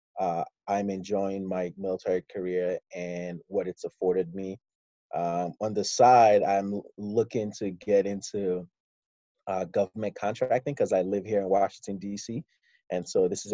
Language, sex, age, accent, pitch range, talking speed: English, male, 20-39, American, 95-125 Hz, 150 wpm